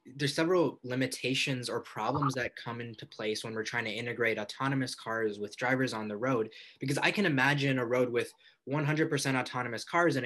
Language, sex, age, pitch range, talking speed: English, male, 20-39, 125-160 Hz, 185 wpm